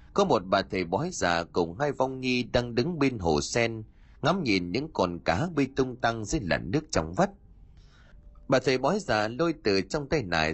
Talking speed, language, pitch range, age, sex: 210 wpm, Vietnamese, 85-130 Hz, 30-49, male